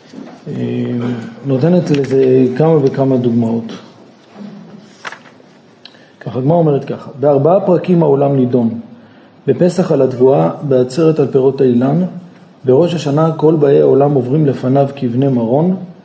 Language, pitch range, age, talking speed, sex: Hebrew, 135-175 Hz, 40-59, 110 wpm, male